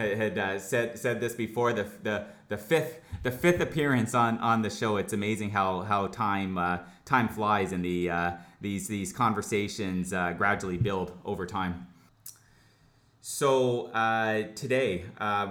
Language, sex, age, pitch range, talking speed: English, male, 30-49, 95-115 Hz, 155 wpm